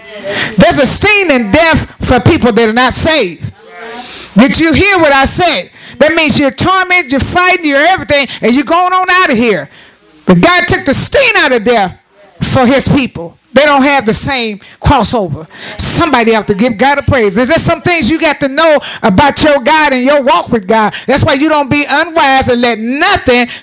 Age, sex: 40-59, female